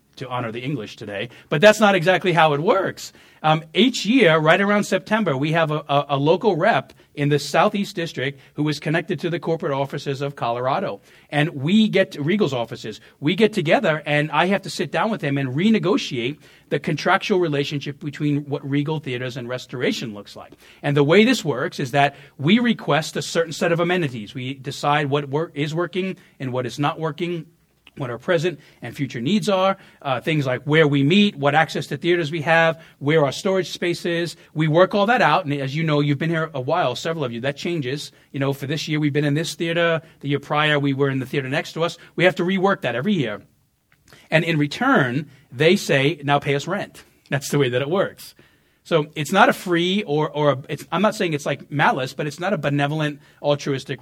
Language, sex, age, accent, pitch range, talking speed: English, male, 40-59, American, 135-170 Hz, 220 wpm